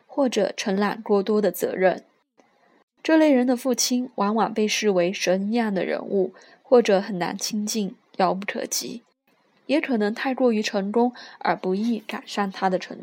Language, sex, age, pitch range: Chinese, female, 20-39, 190-240 Hz